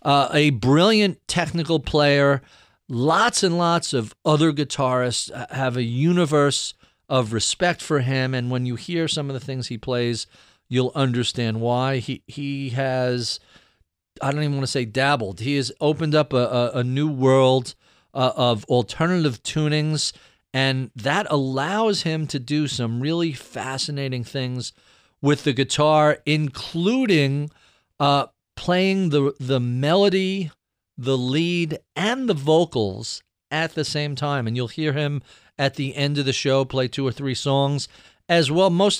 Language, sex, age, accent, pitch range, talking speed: English, male, 40-59, American, 130-155 Hz, 155 wpm